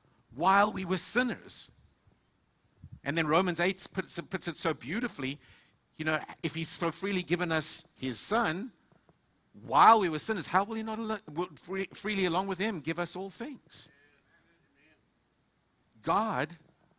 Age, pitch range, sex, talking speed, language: 50-69, 125-170 Hz, male, 145 wpm, English